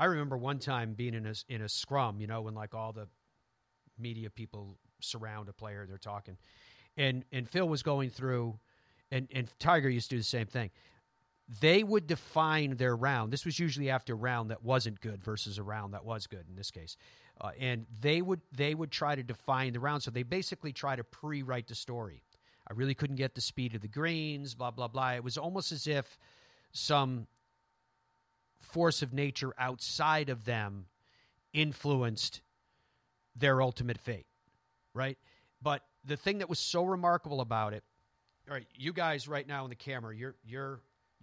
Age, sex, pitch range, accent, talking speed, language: 40-59, male, 115-145 Hz, American, 190 wpm, English